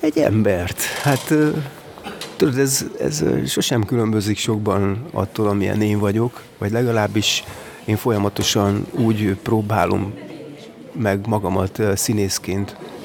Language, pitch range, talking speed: Hungarian, 95-115 Hz, 100 wpm